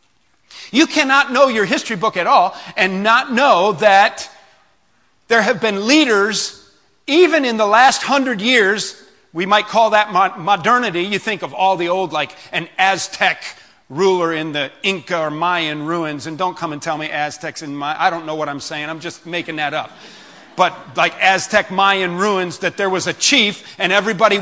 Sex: male